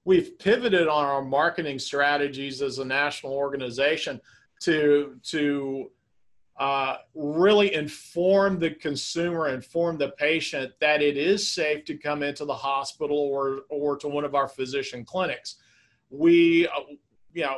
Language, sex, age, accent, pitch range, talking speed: English, male, 50-69, American, 140-165 Hz, 135 wpm